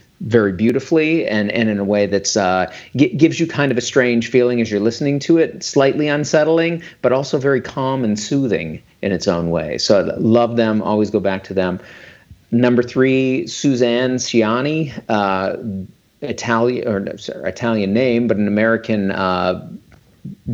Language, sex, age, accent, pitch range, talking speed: English, male, 40-59, American, 100-125 Hz, 150 wpm